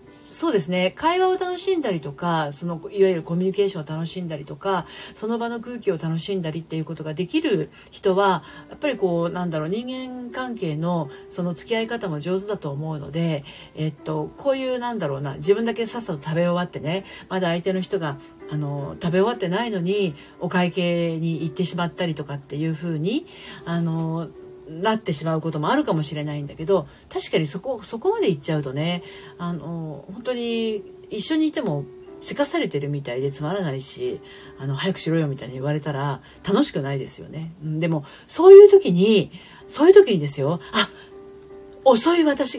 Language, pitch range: Japanese, 155-230 Hz